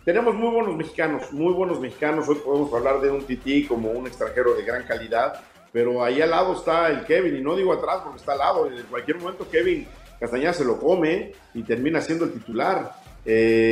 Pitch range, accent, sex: 115-145 Hz, Mexican, male